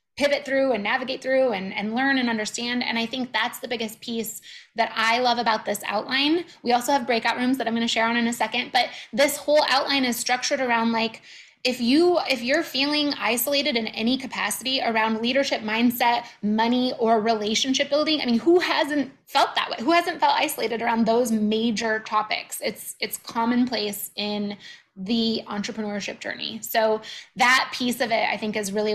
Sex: female